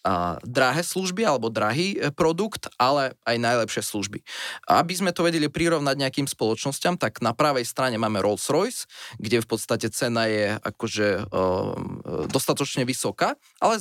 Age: 20-39